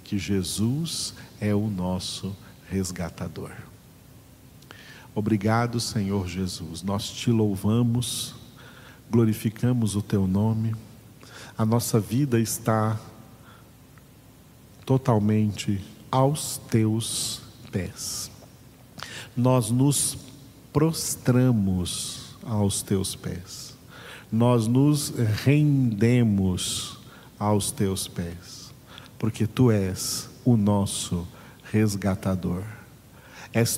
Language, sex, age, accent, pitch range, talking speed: Portuguese, male, 50-69, Brazilian, 105-125 Hz, 75 wpm